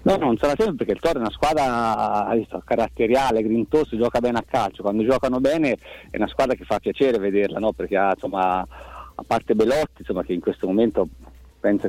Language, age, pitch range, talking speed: Italian, 30-49, 110-140 Hz, 195 wpm